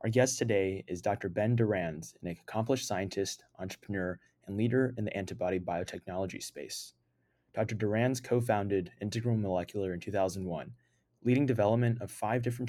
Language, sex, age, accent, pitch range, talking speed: English, male, 20-39, American, 95-120 Hz, 140 wpm